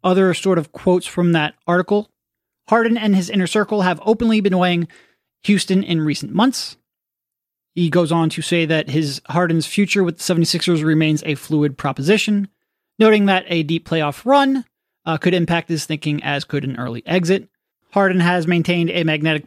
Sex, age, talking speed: male, 30-49, 175 wpm